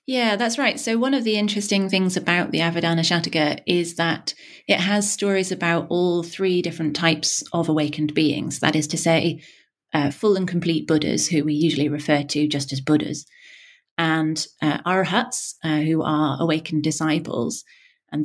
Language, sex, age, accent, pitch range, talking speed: English, female, 30-49, British, 155-195 Hz, 170 wpm